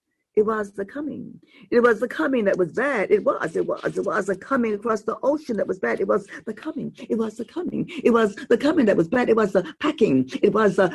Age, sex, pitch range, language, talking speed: 40-59, female, 200-275 Hz, English, 260 wpm